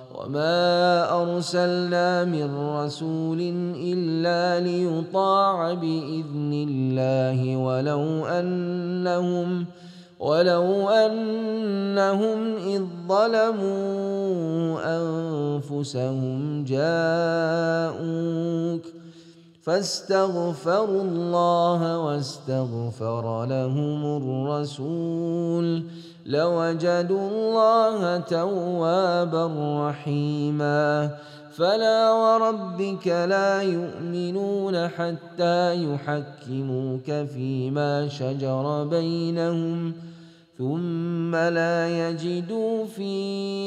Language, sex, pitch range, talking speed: Malay, male, 145-175 Hz, 50 wpm